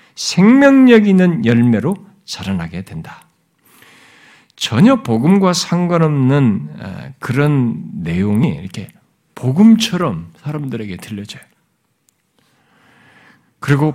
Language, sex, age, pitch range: Korean, male, 50-69, 110-170 Hz